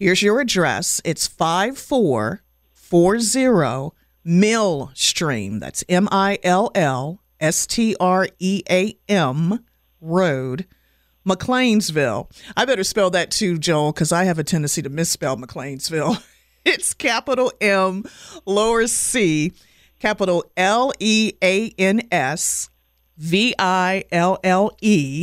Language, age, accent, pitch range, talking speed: English, 50-69, American, 155-210 Hz, 75 wpm